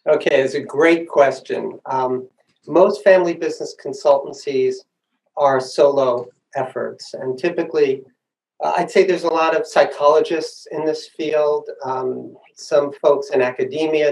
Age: 40-59